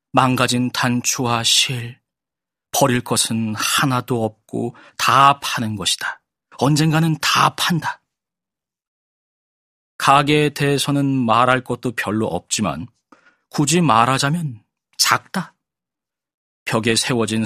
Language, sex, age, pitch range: Korean, male, 40-59, 110-130 Hz